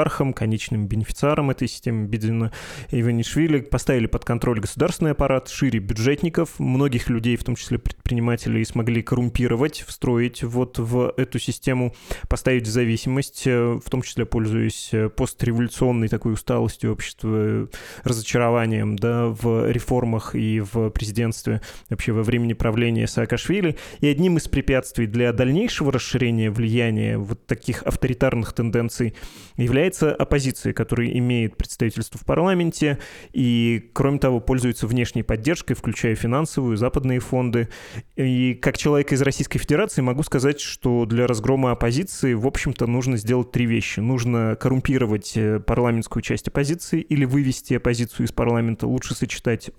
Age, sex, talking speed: 20-39, male, 130 wpm